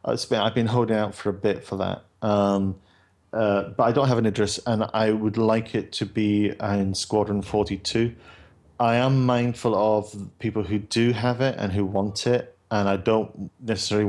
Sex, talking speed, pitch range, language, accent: male, 190 wpm, 100-115 Hz, English, British